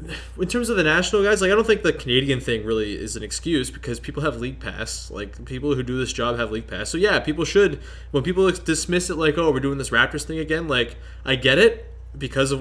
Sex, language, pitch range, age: male, English, 115-175 Hz, 20-39